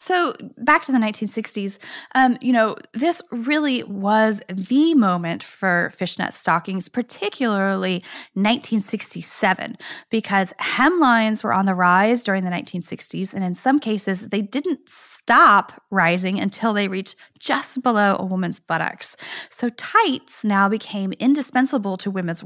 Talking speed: 135 wpm